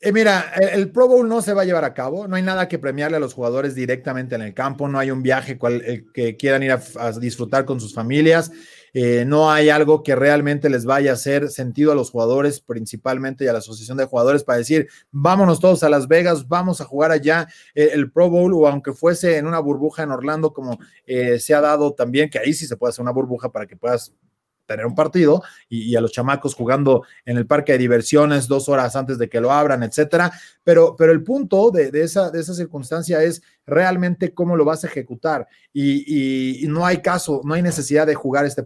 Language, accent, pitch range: Spanish, Mexican, 135-175 Hz